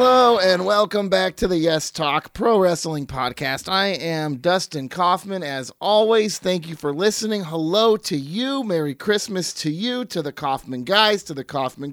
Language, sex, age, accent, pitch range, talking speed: English, male, 30-49, American, 155-220 Hz, 175 wpm